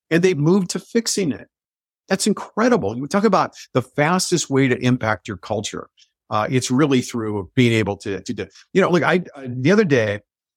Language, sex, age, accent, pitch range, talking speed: English, male, 50-69, American, 110-145 Hz, 200 wpm